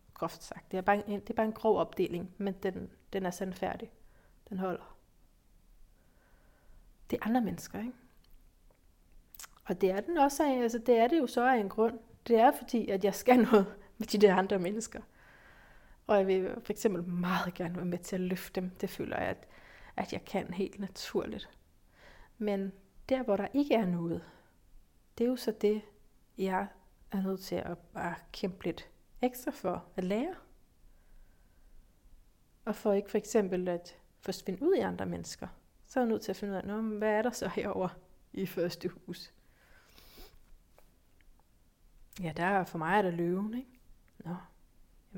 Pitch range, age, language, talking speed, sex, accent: 175-215 Hz, 30-49, Danish, 170 wpm, female, native